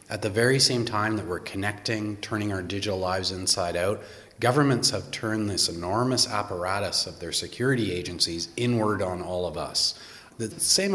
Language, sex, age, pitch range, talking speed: English, male, 30-49, 90-115 Hz, 170 wpm